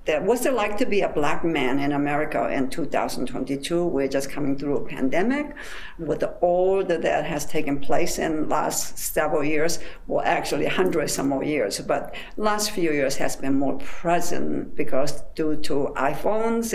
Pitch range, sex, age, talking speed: 150-220 Hz, female, 60-79, 170 wpm